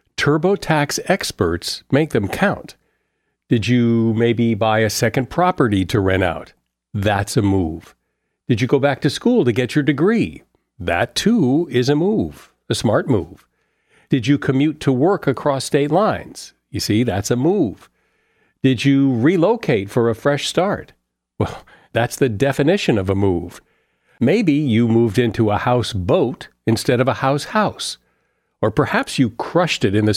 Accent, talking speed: American, 165 wpm